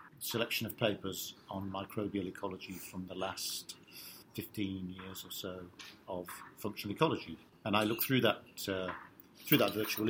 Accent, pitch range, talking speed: British, 95-130 Hz, 150 wpm